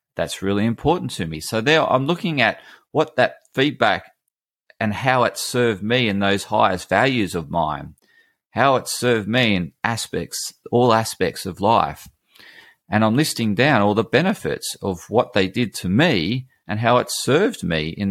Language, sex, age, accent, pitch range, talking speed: English, male, 30-49, Australian, 85-120 Hz, 175 wpm